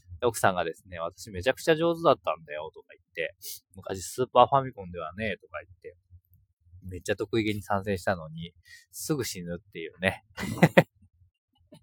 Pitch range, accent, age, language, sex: 90-110 Hz, native, 20-39, Japanese, male